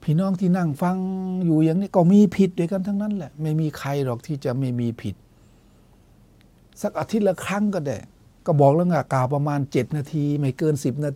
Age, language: 60-79, Thai